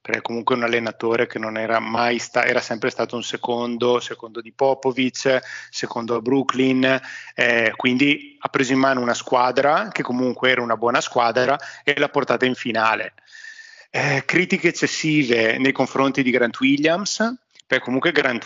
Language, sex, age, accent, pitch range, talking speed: Italian, male, 30-49, native, 115-135 Hz, 160 wpm